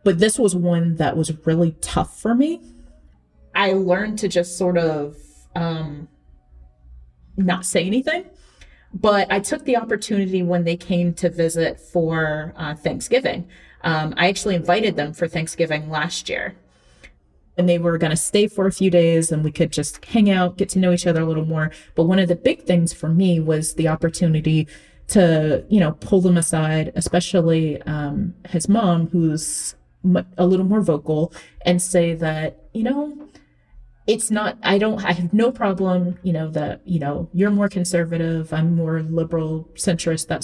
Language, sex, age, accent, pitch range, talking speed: English, female, 30-49, American, 160-185 Hz, 175 wpm